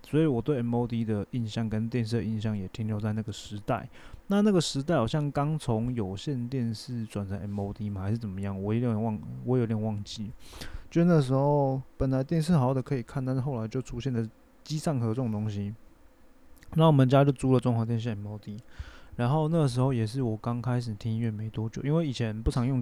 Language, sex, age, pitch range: Chinese, male, 20-39, 110-130 Hz